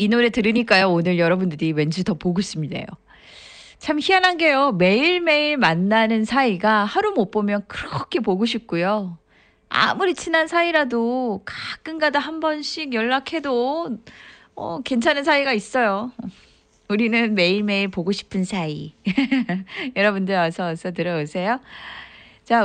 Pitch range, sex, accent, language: 180-260 Hz, female, native, Korean